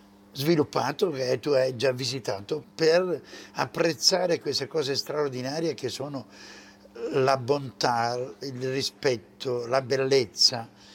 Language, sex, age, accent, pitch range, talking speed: English, male, 60-79, Italian, 105-170 Hz, 105 wpm